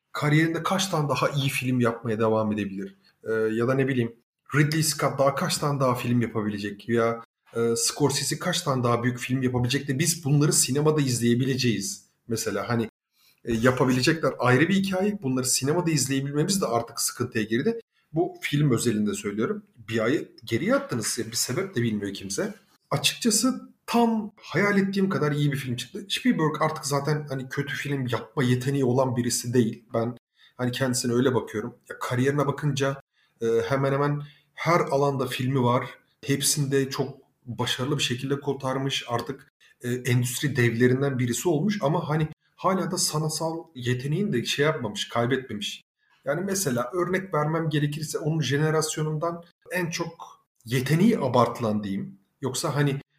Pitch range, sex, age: 120-155 Hz, male, 40-59